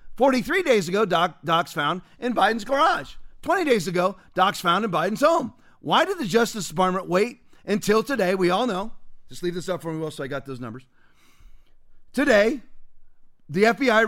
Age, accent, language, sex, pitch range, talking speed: 40-59, American, English, male, 170-230 Hz, 180 wpm